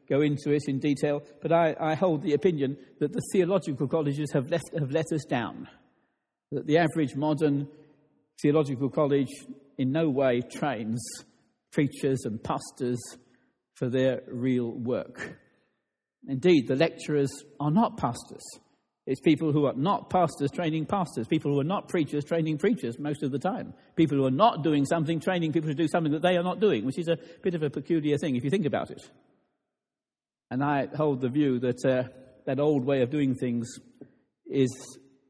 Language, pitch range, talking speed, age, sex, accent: English, 135-170 Hz, 180 wpm, 60-79, male, British